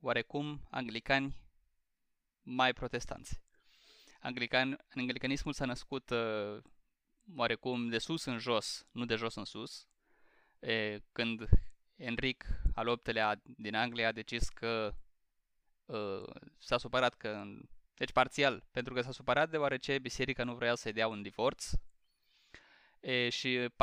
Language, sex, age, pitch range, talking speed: Romanian, male, 20-39, 110-130 Hz, 115 wpm